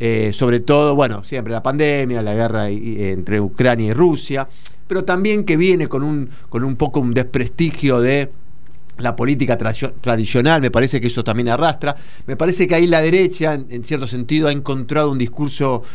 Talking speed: 175 wpm